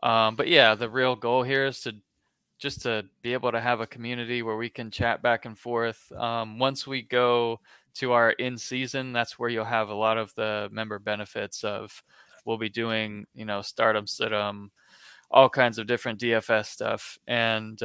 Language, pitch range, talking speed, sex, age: English, 110-125 Hz, 190 wpm, male, 20-39